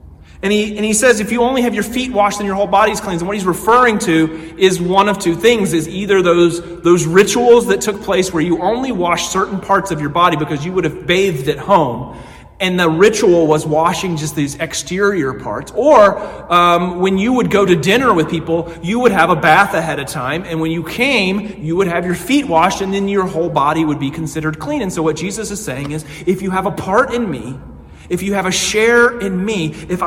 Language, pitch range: English, 160-210 Hz